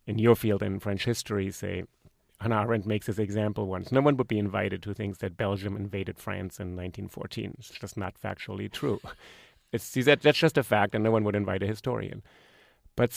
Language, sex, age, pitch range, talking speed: English, male, 30-49, 100-115 Hz, 200 wpm